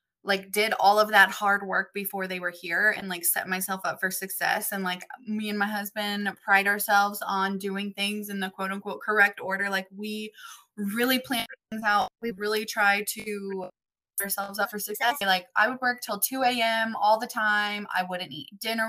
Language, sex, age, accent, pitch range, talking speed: English, female, 20-39, American, 190-215 Hz, 205 wpm